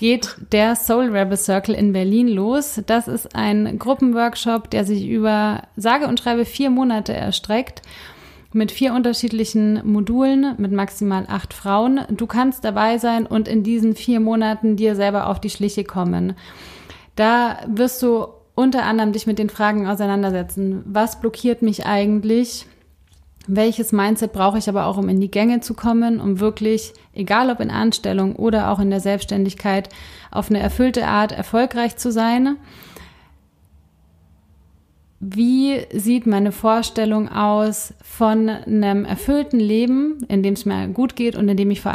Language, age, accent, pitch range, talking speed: German, 30-49, German, 200-230 Hz, 155 wpm